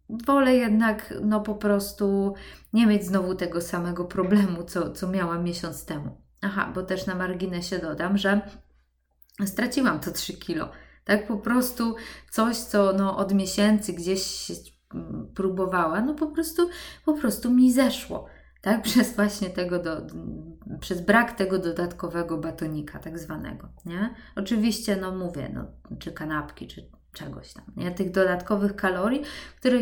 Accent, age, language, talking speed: native, 20-39, Polish, 145 wpm